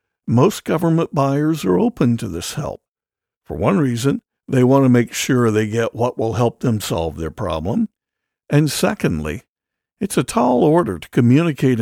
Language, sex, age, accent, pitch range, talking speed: English, male, 60-79, American, 105-145 Hz, 170 wpm